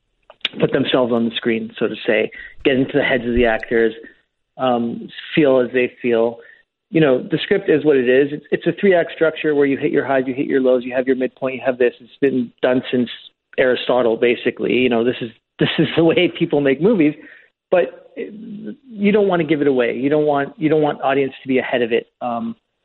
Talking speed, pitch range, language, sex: 230 wpm, 125-150 Hz, English, male